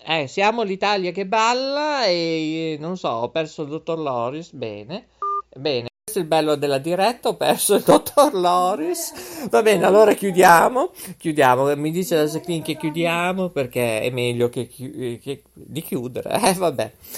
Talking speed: 165 wpm